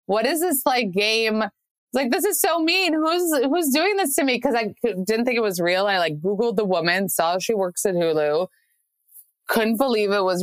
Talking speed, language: 215 wpm, English